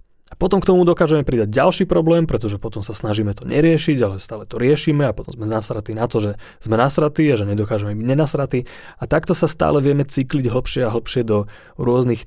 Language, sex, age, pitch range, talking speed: Slovak, male, 30-49, 105-135 Hz, 210 wpm